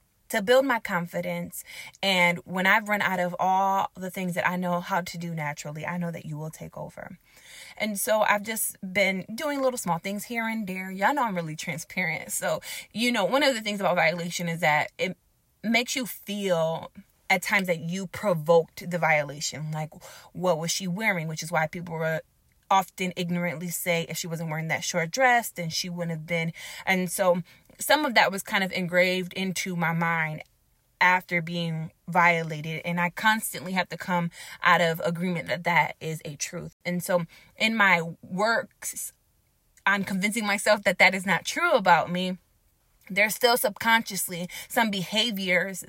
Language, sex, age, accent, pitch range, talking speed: English, female, 20-39, American, 170-200 Hz, 185 wpm